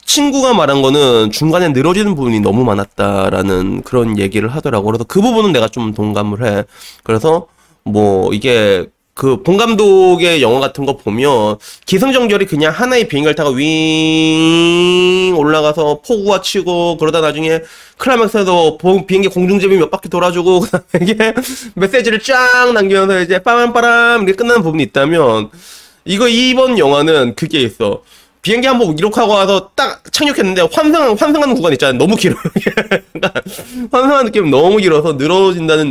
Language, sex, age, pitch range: Korean, male, 20-39, 130-215 Hz